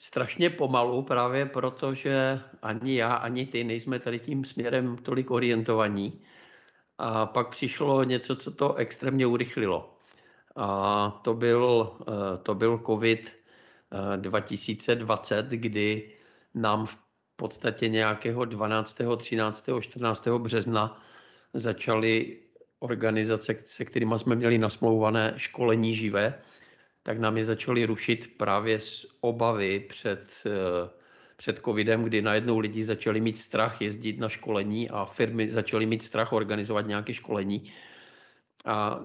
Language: Czech